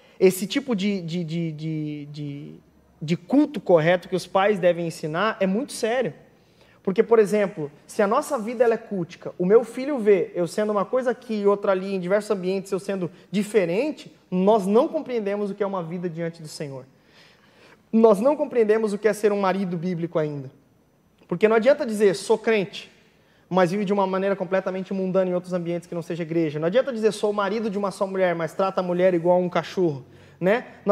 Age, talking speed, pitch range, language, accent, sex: 20-39, 200 wpm, 175-215 Hz, Portuguese, Brazilian, male